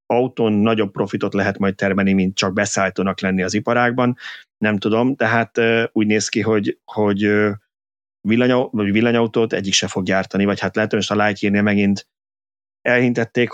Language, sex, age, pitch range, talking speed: Hungarian, male, 30-49, 100-110 Hz, 160 wpm